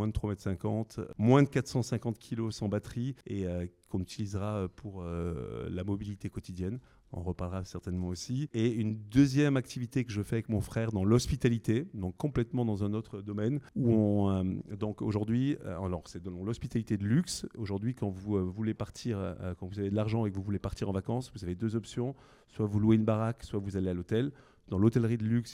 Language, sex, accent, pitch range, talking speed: English, male, French, 95-115 Hz, 210 wpm